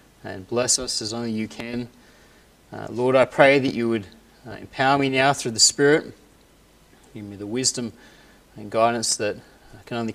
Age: 30-49